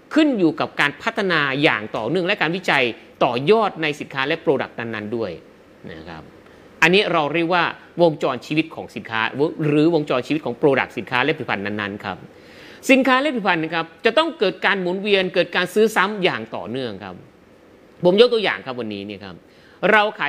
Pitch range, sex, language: 150-220 Hz, male, Thai